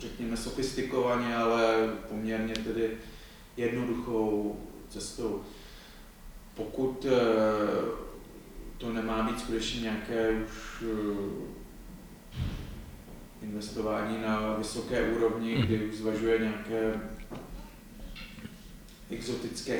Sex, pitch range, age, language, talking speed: male, 105-115 Hz, 30-49, Czech, 70 wpm